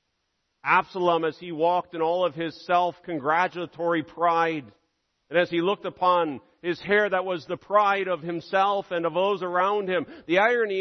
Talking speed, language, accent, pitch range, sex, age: 165 wpm, English, American, 130-180 Hz, male, 50-69